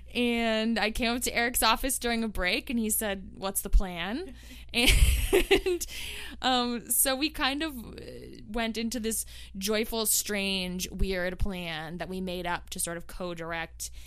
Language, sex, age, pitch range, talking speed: English, female, 20-39, 175-230 Hz, 160 wpm